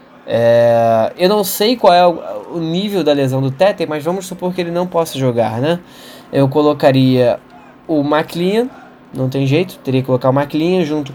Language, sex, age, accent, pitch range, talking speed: Portuguese, male, 10-29, Brazilian, 140-195 Hz, 190 wpm